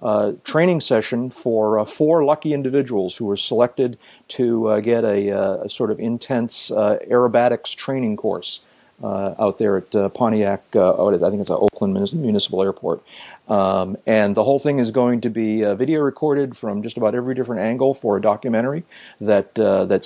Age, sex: 40-59, male